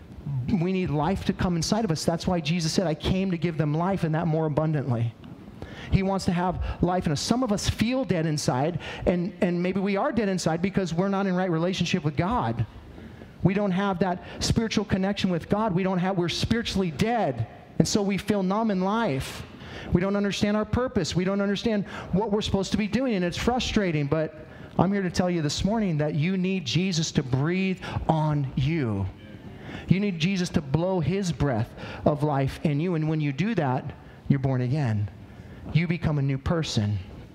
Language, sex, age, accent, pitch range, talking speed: English, male, 40-59, American, 145-190 Hz, 205 wpm